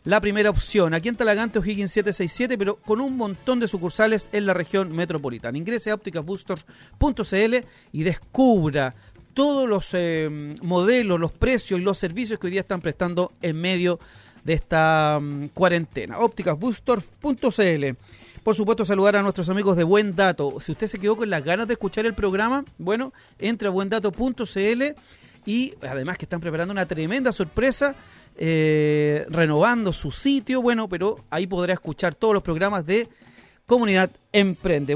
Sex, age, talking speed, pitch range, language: male, 40-59, 155 wpm, 175-230 Hz, Spanish